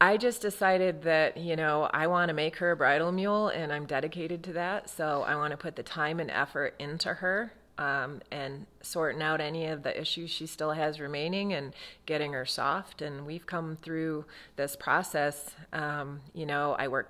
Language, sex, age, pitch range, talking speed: English, female, 30-49, 150-180 Hz, 200 wpm